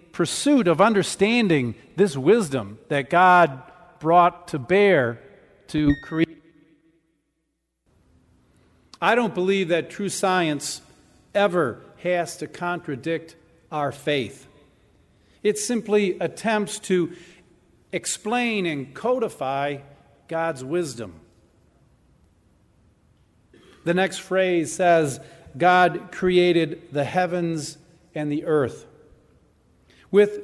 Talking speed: 90 wpm